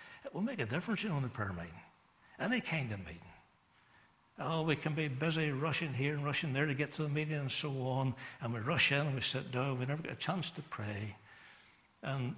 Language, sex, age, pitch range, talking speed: English, male, 60-79, 130-170 Hz, 240 wpm